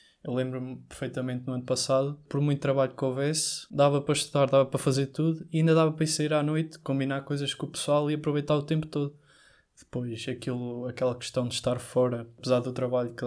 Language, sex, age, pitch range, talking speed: Portuguese, male, 20-39, 130-155 Hz, 215 wpm